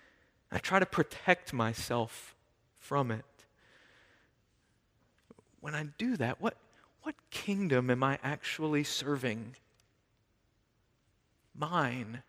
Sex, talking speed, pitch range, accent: male, 95 wpm, 150-210 Hz, American